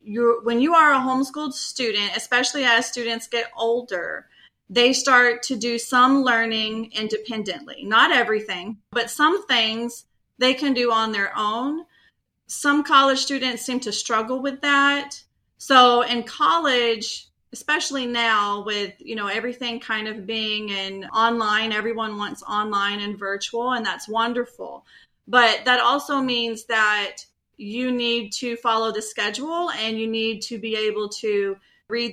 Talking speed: 145 wpm